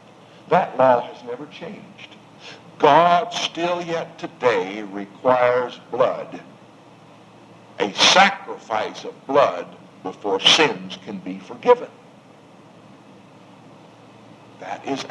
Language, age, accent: English, 60-79, American